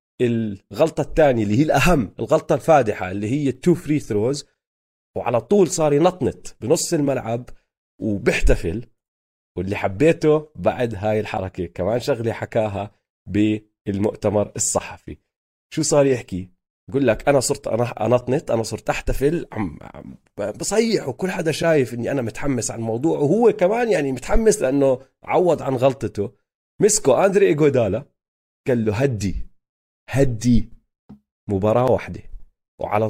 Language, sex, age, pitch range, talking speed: Arabic, male, 30-49, 105-145 Hz, 125 wpm